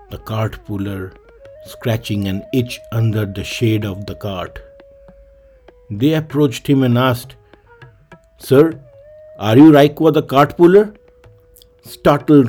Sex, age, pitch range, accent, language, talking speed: male, 60-79, 105-145 Hz, Indian, English, 110 wpm